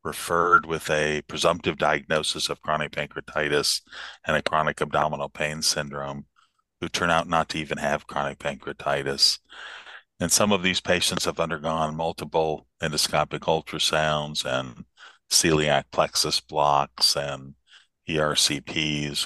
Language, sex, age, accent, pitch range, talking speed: English, male, 40-59, American, 75-80 Hz, 120 wpm